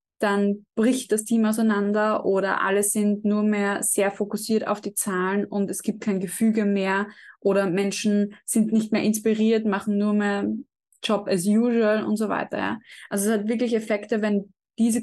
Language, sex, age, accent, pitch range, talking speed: German, female, 20-39, German, 200-235 Hz, 170 wpm